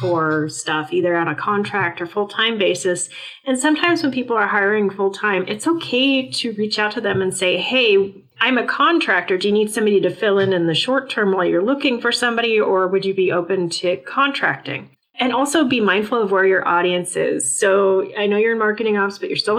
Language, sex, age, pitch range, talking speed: English, female, 30-49, 185-225 Hz, 220 wpm